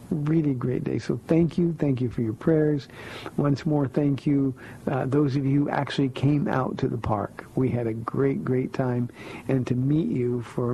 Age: 60-79